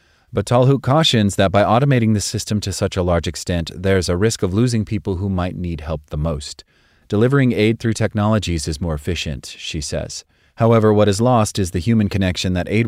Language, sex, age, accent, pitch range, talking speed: English, male, 30-49, American, 85-110 Hz, 205 wpm